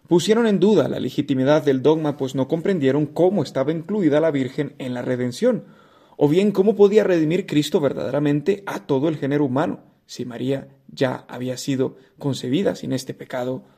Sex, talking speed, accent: male, 170 wpm, Mexican